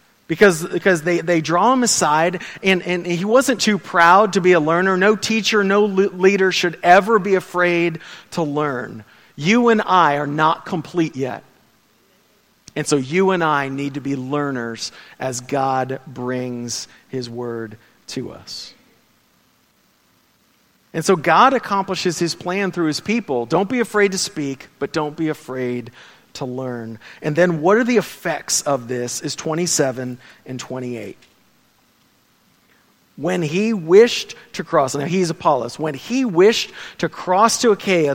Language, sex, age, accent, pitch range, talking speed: English, male, 40-59, American, 140-200 Hz, 155 wpm